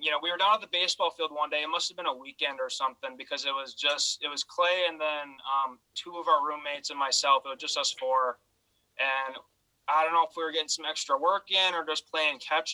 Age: 20-39